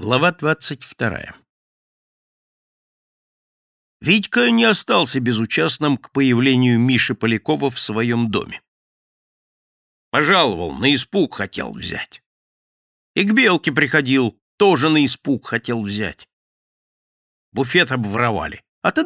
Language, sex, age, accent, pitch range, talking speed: Russian, male, 60-79, native, 115-180 Hz, 100 wpm